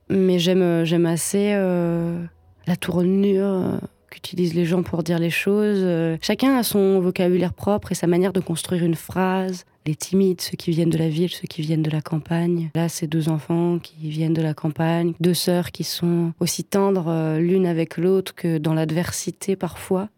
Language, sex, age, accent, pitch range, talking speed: French, female, 20-39, French, 165-190 Hz, 195 wpm